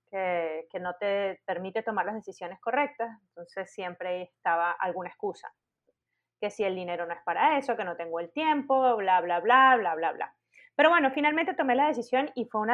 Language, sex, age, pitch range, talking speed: Spanish, female, 20-39, 185-230 Hz, 195 wpm